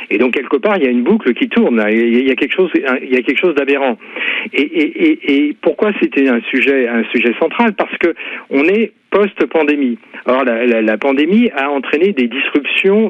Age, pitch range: 40-59, 120-200 Hz